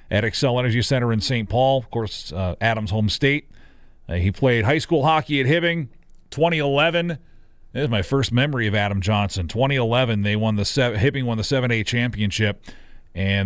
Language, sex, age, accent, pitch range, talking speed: English, male, 40-59, American, 110-140 Hz, 180 wpm